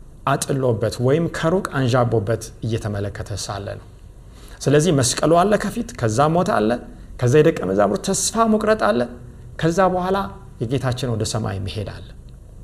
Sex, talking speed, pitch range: male, 115 wpm, 120-160 Hz